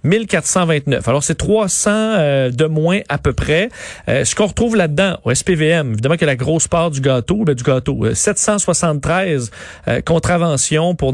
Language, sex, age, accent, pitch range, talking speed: French, male, 40-59, Canadian, 135-170 Hz, 165 wpm